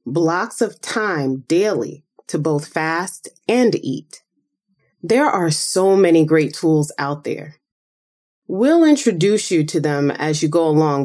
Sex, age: female, 20-39